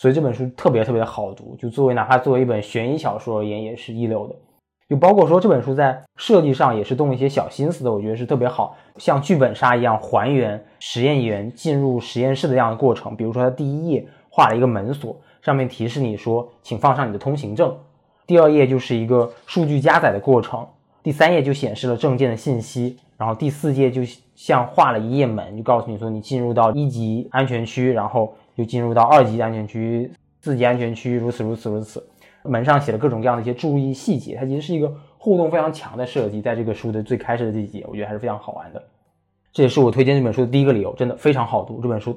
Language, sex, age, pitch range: Chinese, male, 20-39, 115-140 Hz